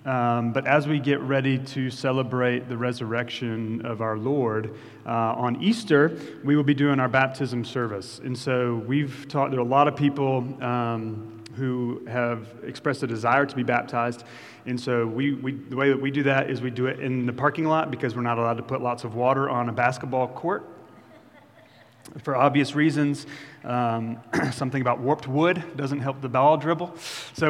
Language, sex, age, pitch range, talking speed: English, male, 30-49, 120-140 Hz, 190 wpm